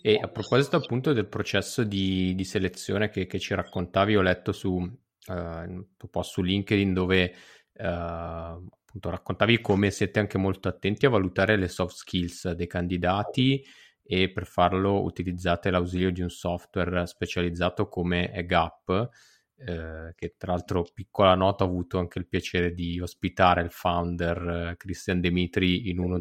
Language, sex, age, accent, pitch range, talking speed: Italian, male, 20-39, native, 90-100 Hz, 150 wpm